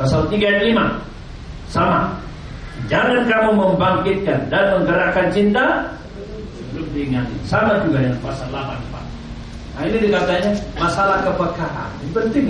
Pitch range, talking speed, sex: 150-210 Hz, 115 wpm, male